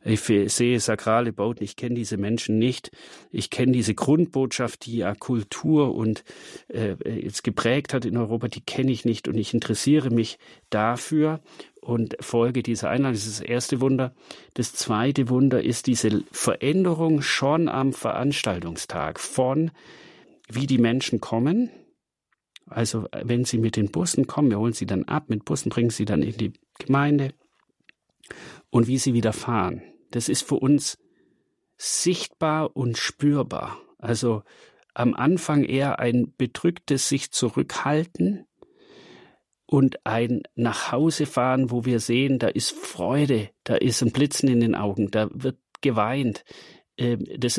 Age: 40-59